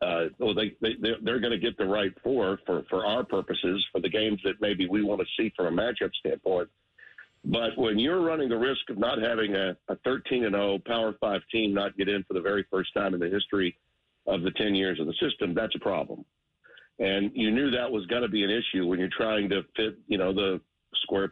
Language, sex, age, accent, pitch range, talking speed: English, male, 50-69, American, 100-130 Hz, 240 wpm